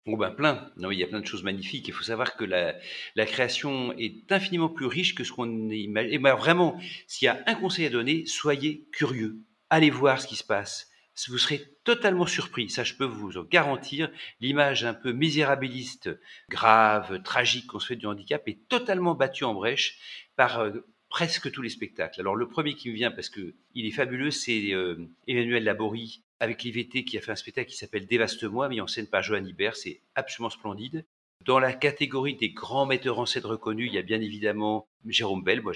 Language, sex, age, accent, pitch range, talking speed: French, male, 50-69, French, 110-140 Hz, 215 wpm